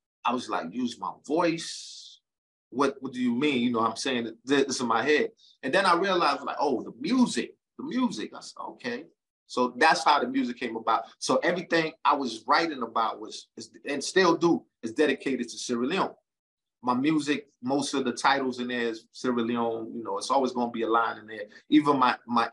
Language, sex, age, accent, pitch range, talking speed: English, male, 30-49, American, 115-135 Hz, 210 wpm